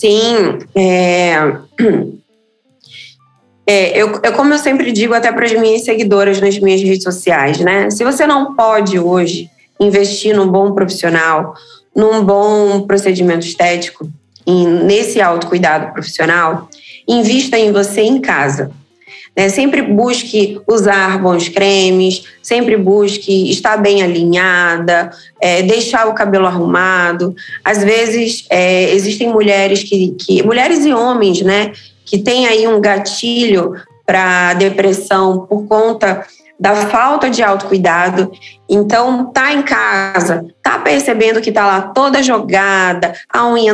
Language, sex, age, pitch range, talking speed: Portuguese, female, 20-39, 180-220 Hz, 130 wpm